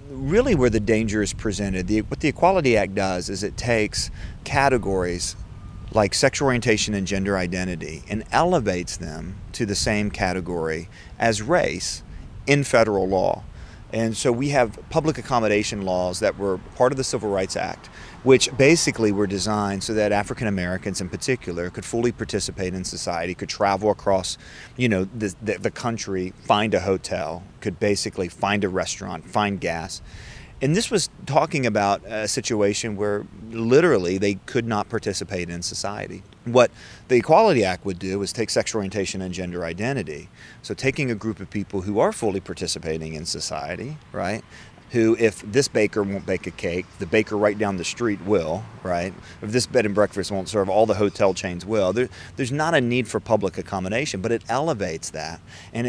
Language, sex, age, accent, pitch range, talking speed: English, male, 40-59, American, 95-115 Hz, 175 wpm